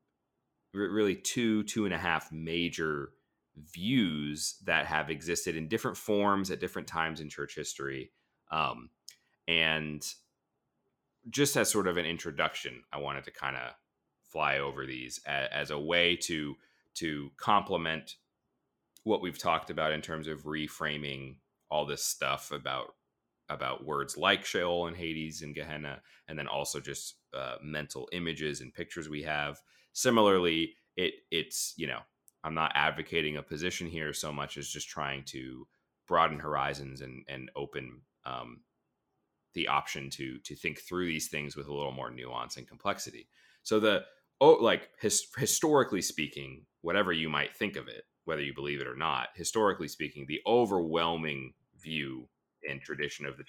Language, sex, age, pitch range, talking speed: English, male, 30-49, 70-80 Hz, 155 wpm